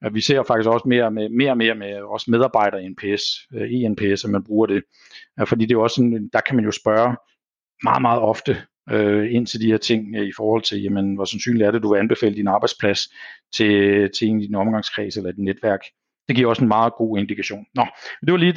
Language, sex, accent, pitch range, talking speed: Danish, male, native, 110-135 Hz, 225 wpm